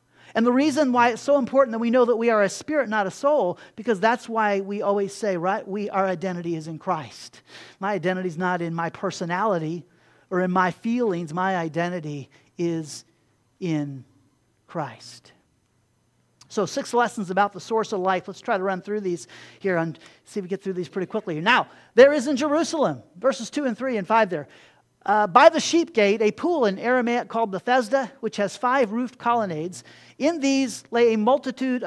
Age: 40-59